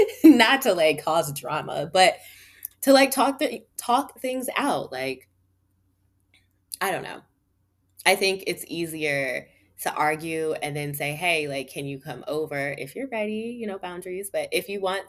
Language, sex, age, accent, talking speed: English, female, 20-39, American, 165 wpm